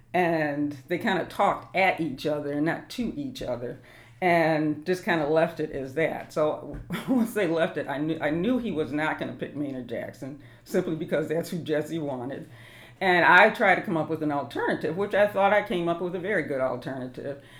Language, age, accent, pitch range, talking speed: English, 50-69, American, 140-180 Hz, 220 wpm